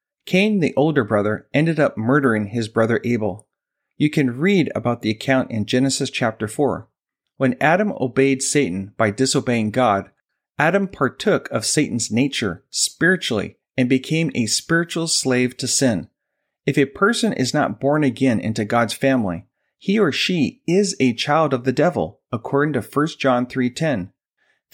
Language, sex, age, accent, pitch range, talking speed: English, male, 40-59, American, 115-145 Hz, 155 wpm